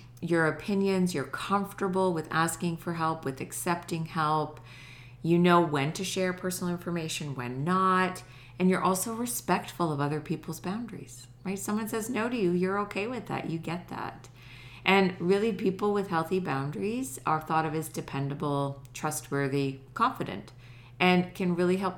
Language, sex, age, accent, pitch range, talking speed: English, female, 40-59, American, 135-180 Hz, 160 wpm